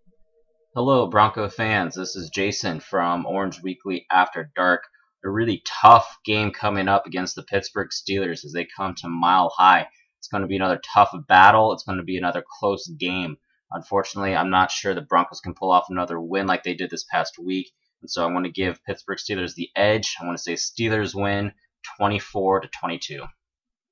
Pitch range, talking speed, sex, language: 90-105 Hz, 195 wpm, male, English